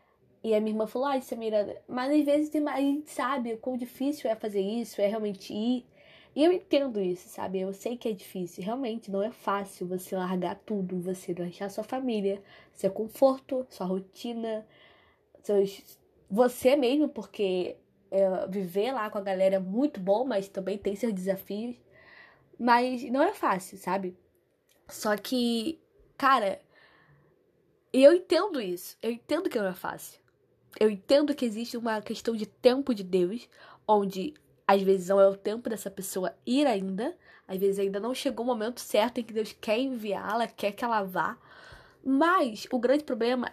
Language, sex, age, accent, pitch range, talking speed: Portuguese, female, 10-29, Brazilian, 195-265 Hz, 170 wpm